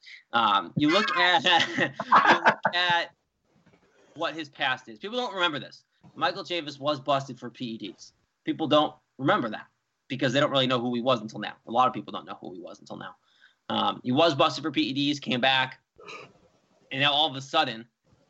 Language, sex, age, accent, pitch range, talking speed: English, male, 20-39, American, 130-170 Hz, 195 wpm